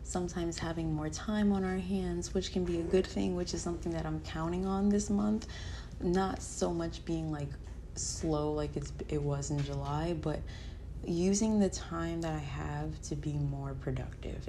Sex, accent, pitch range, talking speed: female, American, 115-180 Hz, 180 wpm